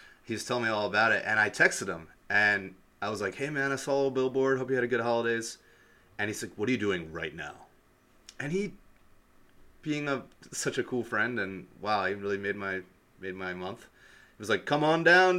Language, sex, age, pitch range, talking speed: English, male, 30-49, 95-125 Hz, 235 wpm